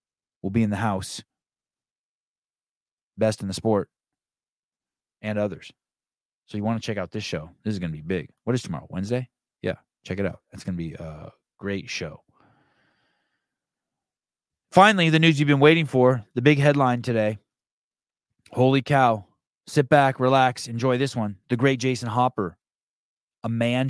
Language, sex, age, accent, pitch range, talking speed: English, male, 30-49, American, 105-130 Hz, 165 wpm